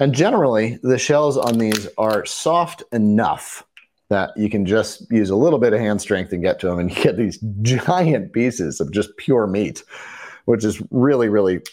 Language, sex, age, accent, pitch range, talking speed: English, male, 30-49, American, 95-130 Hz, 195 wpm